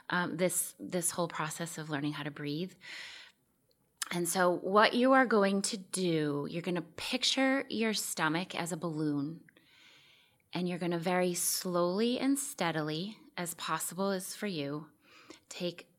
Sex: female